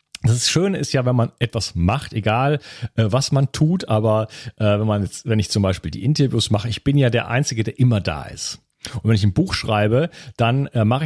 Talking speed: 235 wpm